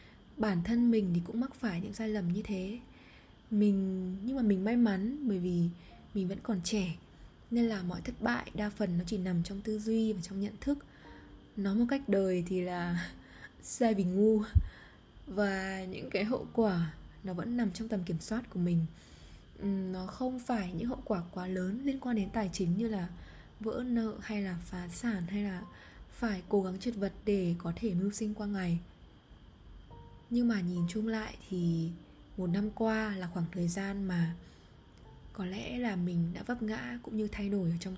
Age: 20-39